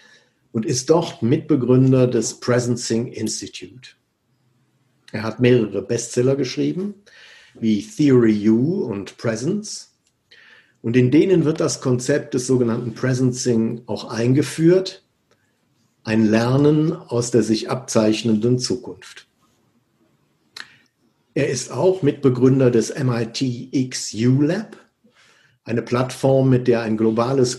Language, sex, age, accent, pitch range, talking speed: German, male, 50-69, German, 115-140 Hz, 105 wpm